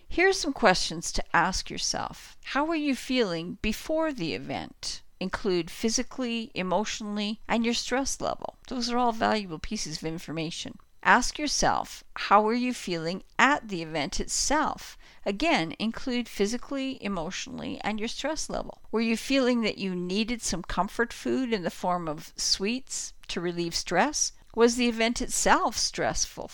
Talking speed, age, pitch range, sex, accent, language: 150 wpm, 50-69, 185-250 Hz, female, American, English